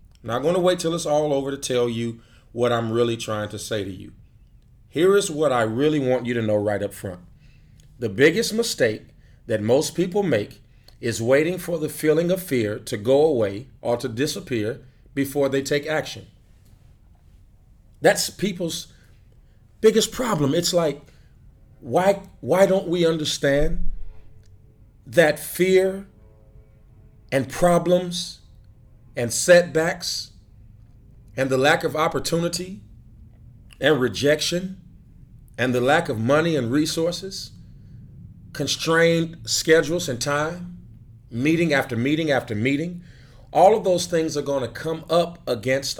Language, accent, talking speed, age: English, American, 140 wpm, 40-59